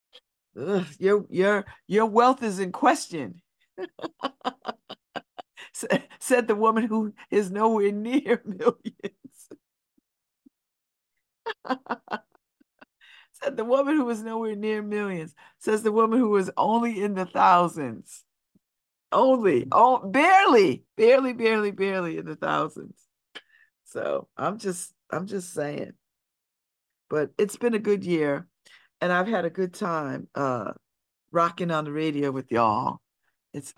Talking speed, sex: 120 wpm, female